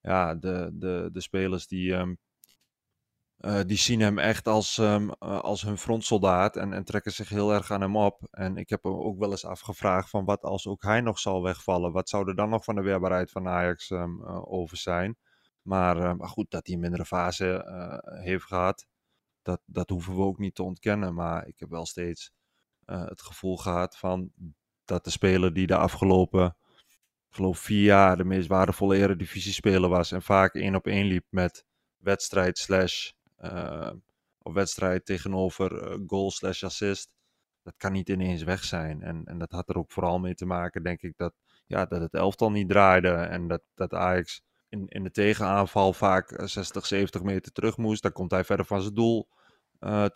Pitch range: 90-100 Hz